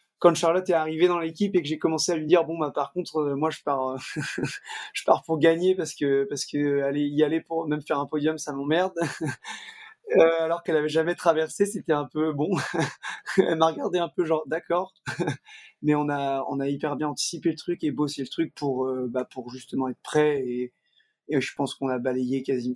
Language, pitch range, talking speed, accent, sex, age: French, 135-165 Hz, 215 wpm, French, male, 20-39